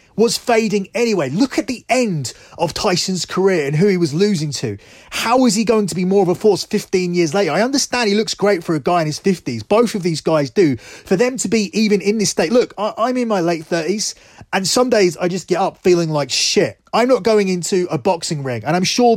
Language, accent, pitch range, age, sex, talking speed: English, British, 165-210 Hz, 30-49, male, 245 wpm